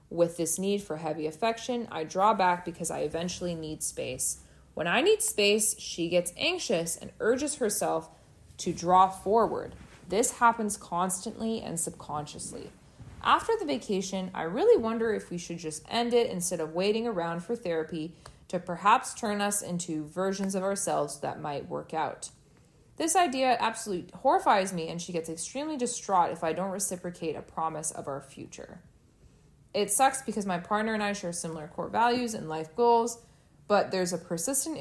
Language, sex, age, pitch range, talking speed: English, female, 20-39, 170-230 Hz, 170 wpm